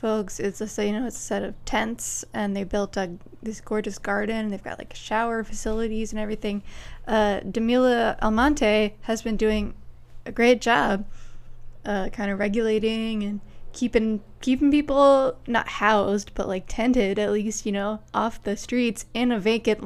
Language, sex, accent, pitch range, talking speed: English, female, American, 200-230 Hz, 170 wpm